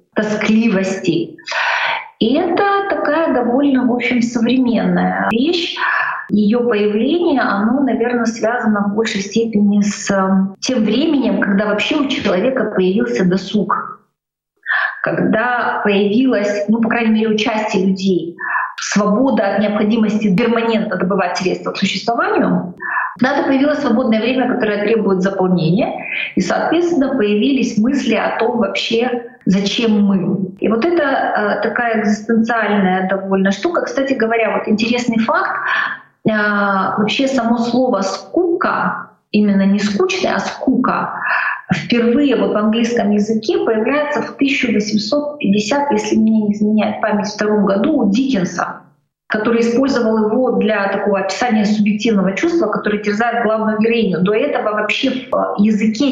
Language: Russian